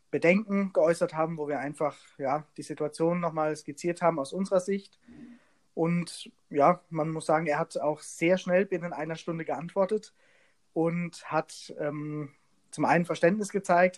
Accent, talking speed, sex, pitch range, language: German, 150 wpm, male, 140-170 Hz, German